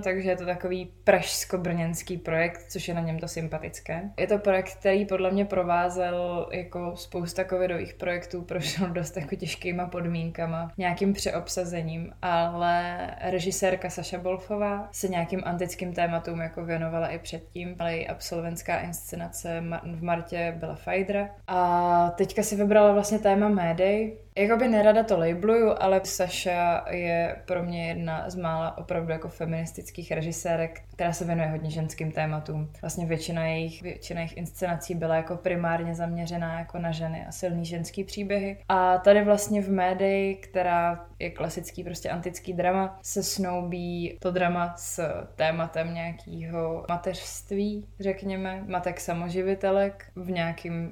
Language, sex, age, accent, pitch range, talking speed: Czech, female, 20-39, native, 170-185 Hz, 140 wpm